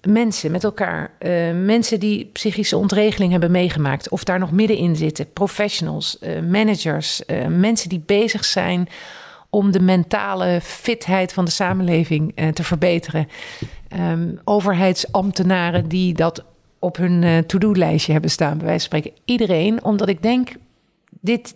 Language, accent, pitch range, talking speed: Dutch, Dutch, 175-220 Hz, 150 wpm